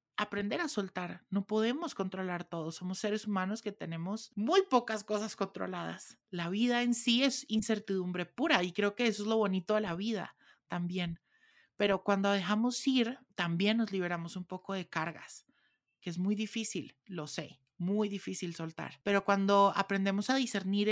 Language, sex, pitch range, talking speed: Spanish, male, 190-230 Hz, 170 wpm